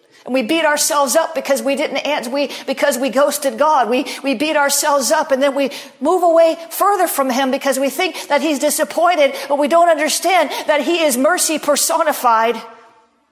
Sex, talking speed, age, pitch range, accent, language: female, 190 wpm, 50-69, 245-285 Hz, American, English